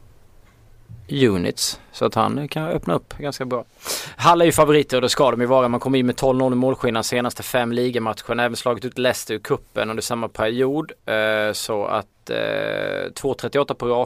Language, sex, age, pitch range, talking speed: Swedish, male, 20-39, 100-125 Hz, 185 wpm